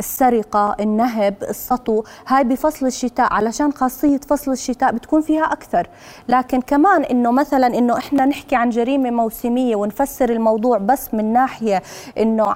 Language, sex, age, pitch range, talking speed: Arabic, female, 20-39, 235-285 Hz, 140 wpm